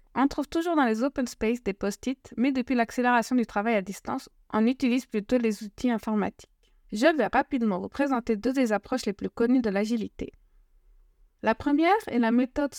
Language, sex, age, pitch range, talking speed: French, female, 20-39, 220-270 Hz, 190 wpm